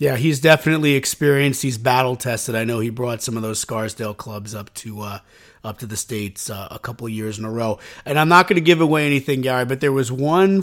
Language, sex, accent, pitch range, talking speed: English, male, American, 110-140 Hz, 250 wpm